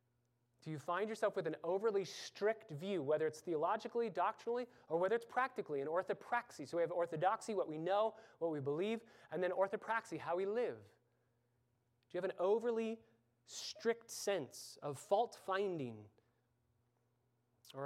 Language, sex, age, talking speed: English, male, 30-49, 150 wpm